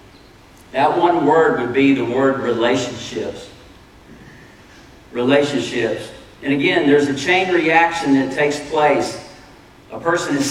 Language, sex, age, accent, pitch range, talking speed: English, male, 40-59, American, 135-165 Hz, 120 wpm